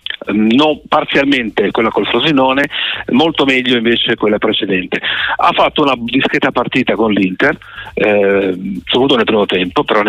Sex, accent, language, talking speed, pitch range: male, native, Italian, 135 wpm, 110-135 Hz